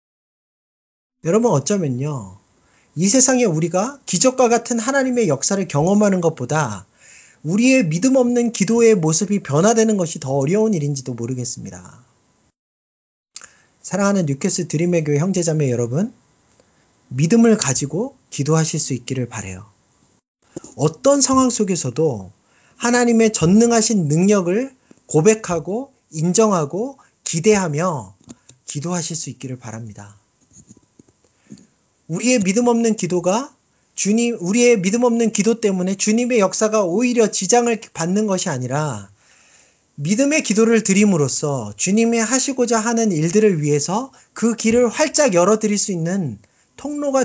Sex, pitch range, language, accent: male, 145-230 Hz, Korean, native